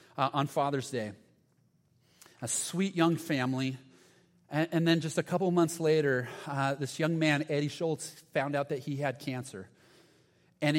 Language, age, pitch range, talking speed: English, 30-49, 135-165 Hz, 160 wpm